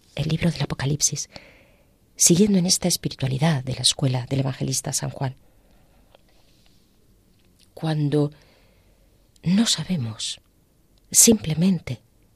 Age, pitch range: 40-59, 125-160 Hz